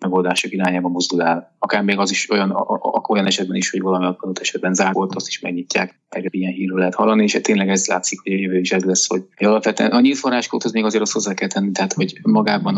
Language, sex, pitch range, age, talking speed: Hungarian, male, 90-100 Hz, 20-39, 230 wpm